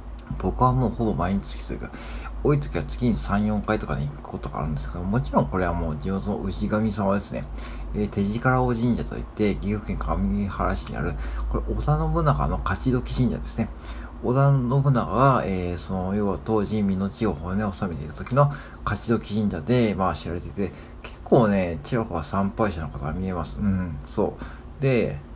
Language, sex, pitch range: Japanese, male, 90-130 Hz